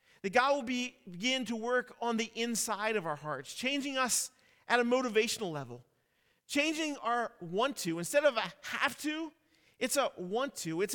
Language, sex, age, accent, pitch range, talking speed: English, male, 40-59, American, 200-260 Hz, 165 wpm